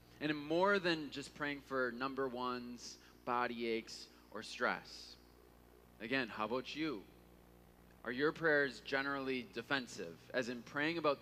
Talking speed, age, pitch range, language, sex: 135 wpm, 20-39, 110-160 Hz, English, male